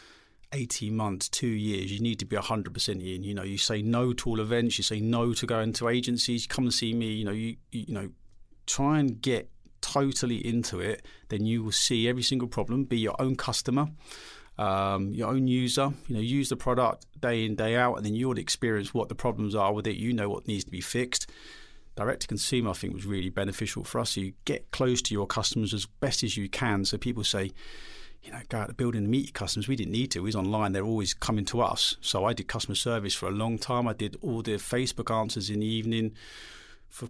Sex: male